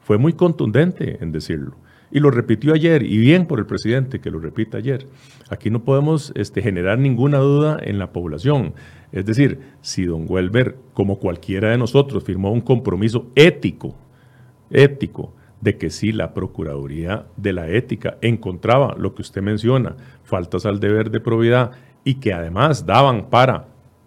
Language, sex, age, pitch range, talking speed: Spanish, male, 40-59, 95-130 Hz, 160 wpm